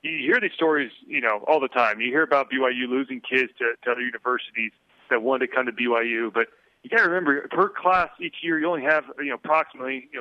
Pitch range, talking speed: 115-140 Hz, 240 wpm